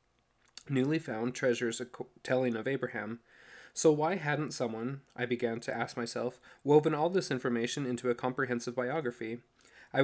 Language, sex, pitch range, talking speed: English, male, 120-140 Hz, 145 wpm